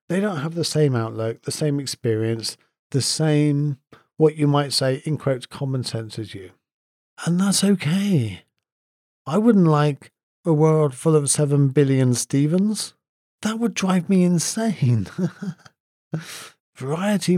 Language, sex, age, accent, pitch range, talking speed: English, male, 40-59, British, 130-175 Hz, 140 wpm